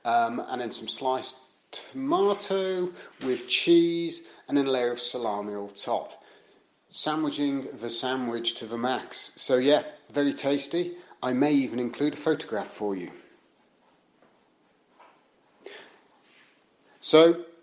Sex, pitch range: male, 120-150 Hz